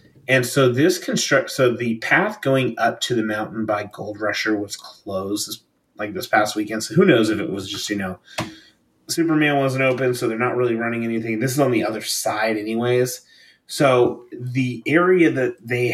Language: English